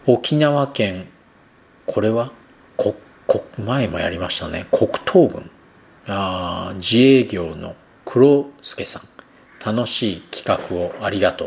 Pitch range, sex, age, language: 95-125 Hz, male, 40-59, Japanese